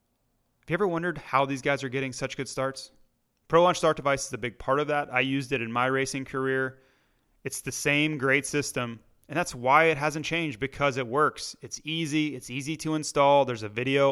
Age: 30-49